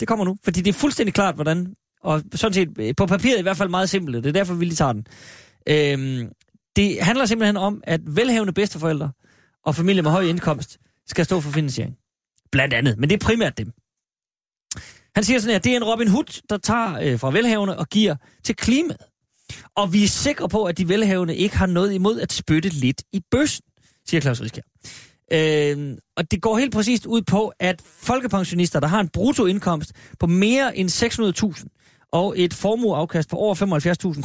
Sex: male